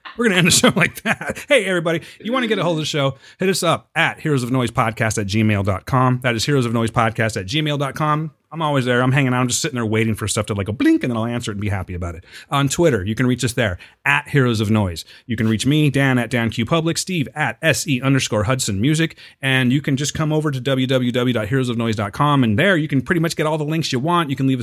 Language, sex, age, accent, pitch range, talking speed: English, male, 30-49, American, 110-155 Hz, 270 wpm